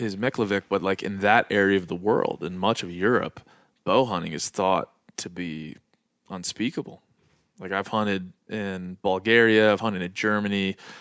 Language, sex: English, male